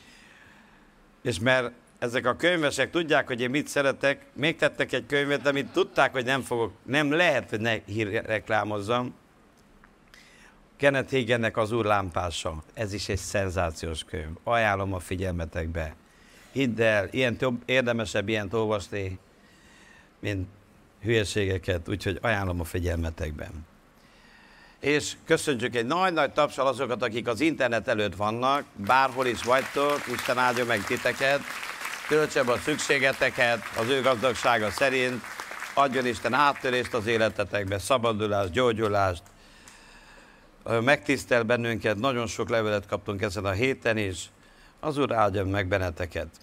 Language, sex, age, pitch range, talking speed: Hungarian, male, 60-79, 105-130 Hz, 125 wpm